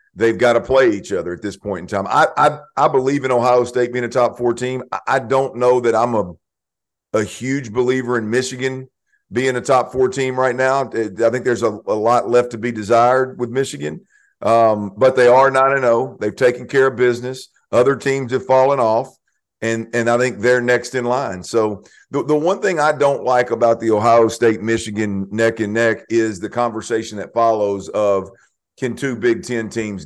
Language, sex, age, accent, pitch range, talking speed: English, male, 50-69, American, 115-130 Hz, 200 wpm